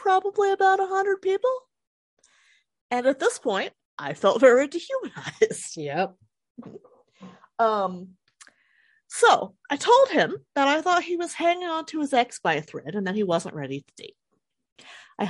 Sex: female